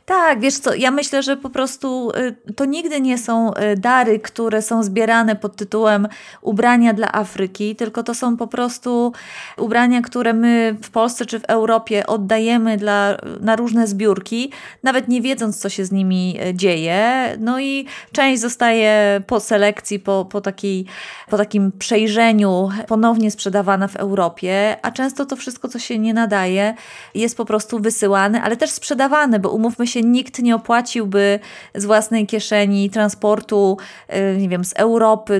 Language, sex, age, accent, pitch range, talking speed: Polish, female, 30-49, native, 205-240 Hz, 150 wpm